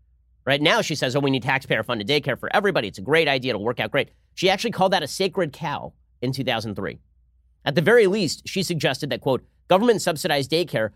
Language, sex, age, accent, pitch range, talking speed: English, male, 30-49, American, 120-175 Hz, 210 wpm